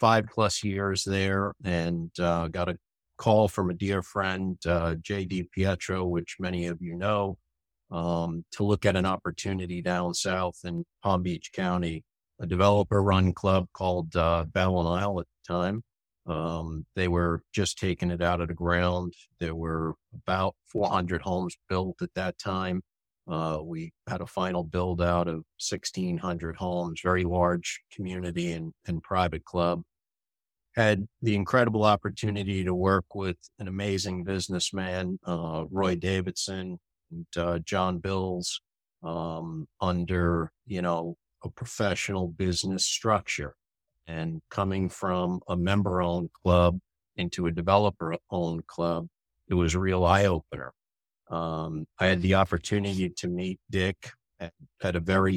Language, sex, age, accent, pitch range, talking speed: English, male, 50-69, American, 85-95 Hz, 145 wpm